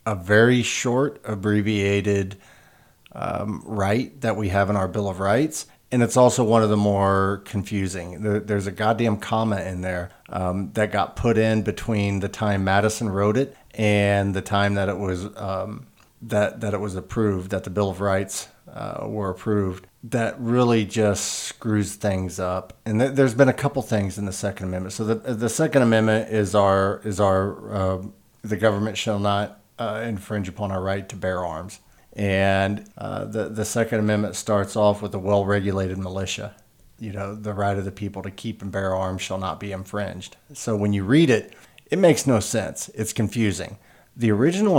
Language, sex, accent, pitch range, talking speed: English, male, American, 95-110 Hz, 185 wpm